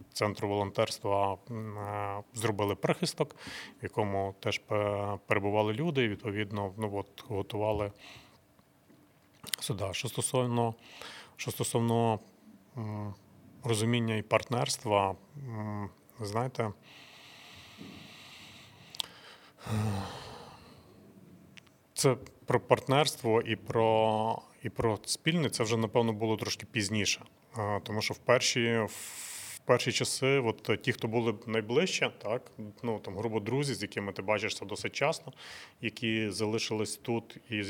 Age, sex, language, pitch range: 30-49, male, Ukrainian, 105-120 Hz